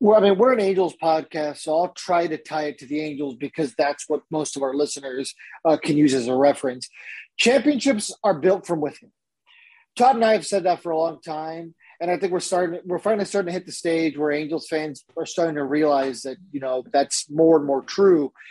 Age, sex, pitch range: 30-49, male, 150-190 Hz